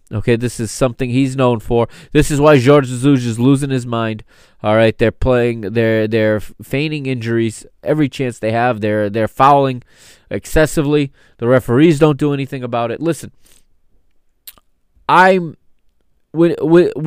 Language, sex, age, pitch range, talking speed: English, male, 20-39, 110-140 Hz, 150 wpm